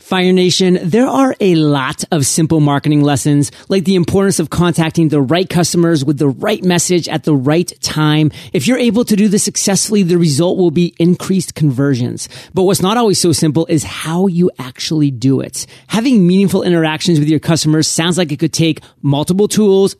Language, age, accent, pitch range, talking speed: English, 30-49, American, 150-185 Hz, 190 wpm